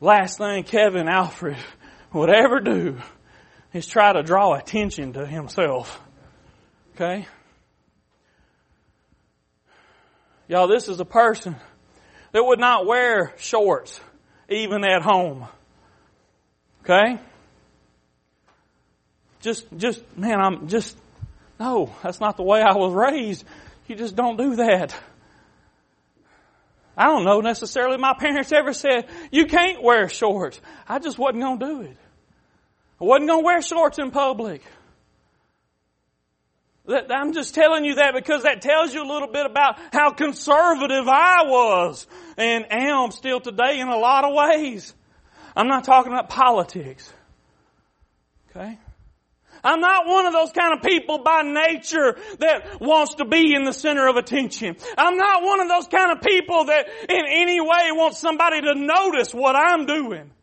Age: 30-49